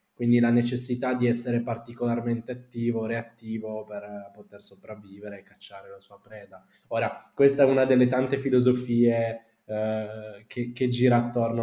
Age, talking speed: 20-39, 145 wpm